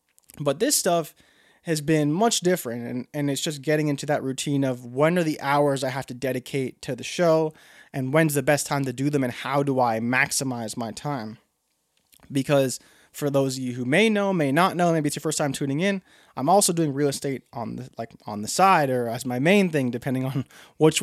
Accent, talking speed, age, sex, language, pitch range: American, 220 wpm, 20-39, male, English, 135-170 Hz